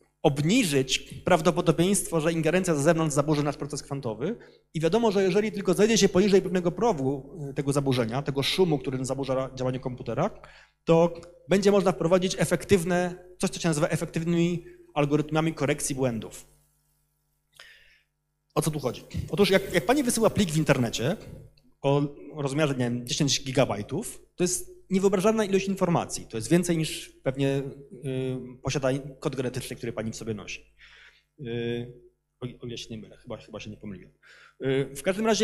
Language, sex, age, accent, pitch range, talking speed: Polish, male, 30-49, native, 140-185 Hz, 145 wpm